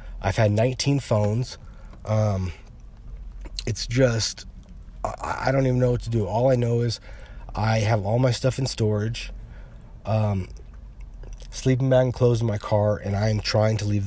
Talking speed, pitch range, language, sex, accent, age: 165 wpm, 100-120 Hz, English, male, American, 30-49